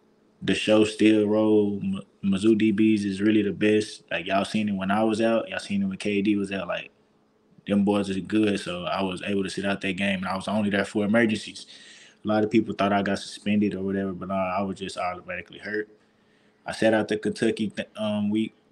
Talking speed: 225 wpm